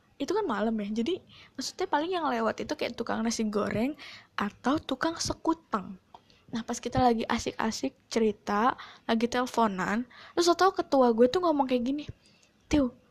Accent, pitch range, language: native, 230-320 Hz, Indonesian